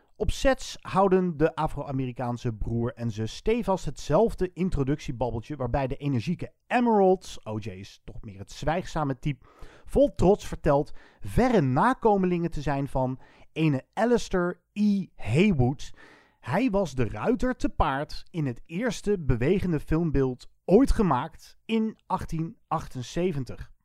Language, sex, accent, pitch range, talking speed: Dutch, male, Dutch, 125-200 Hz, 125 wpm